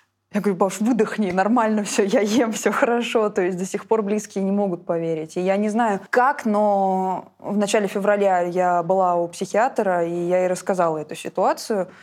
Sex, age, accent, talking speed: female, 20-39, native, 190 wpm